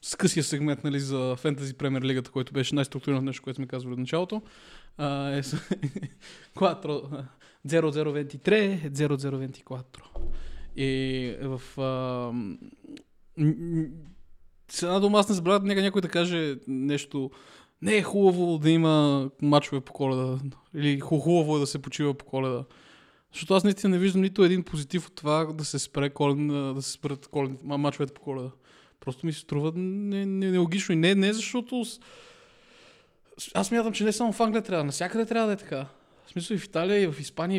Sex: male